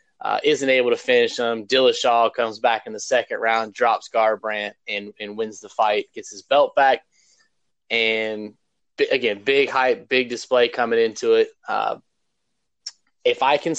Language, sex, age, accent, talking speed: English, male, 20-39, American, 165 wpm